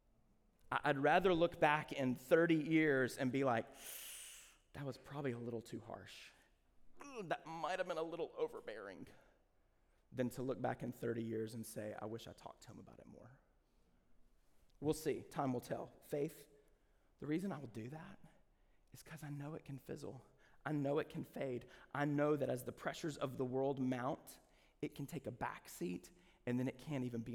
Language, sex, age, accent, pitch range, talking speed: English, male, 30-49, American, 130-165 Hz, 190 wpm